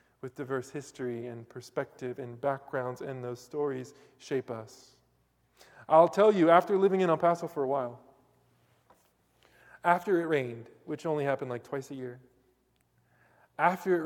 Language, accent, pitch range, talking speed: English, American, 120-150 Hz, 150 wpm